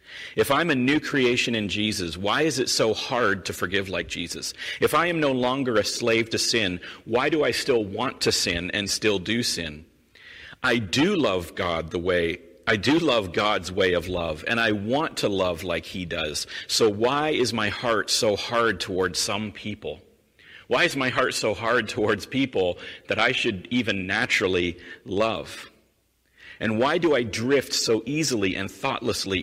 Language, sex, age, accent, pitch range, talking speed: English, male, 40-59, American, 95-125 Hz, 180 wpm